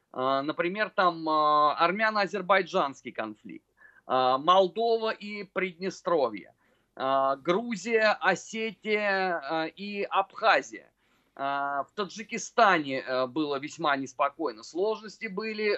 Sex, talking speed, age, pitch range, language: male, 70 wpm, 30-49, 160-215 Hz, Russian